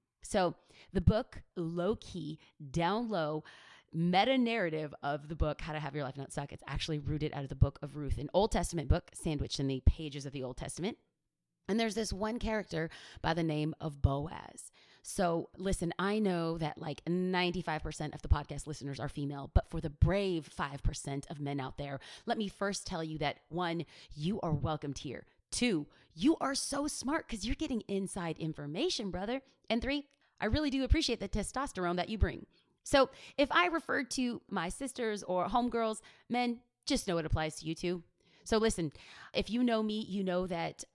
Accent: American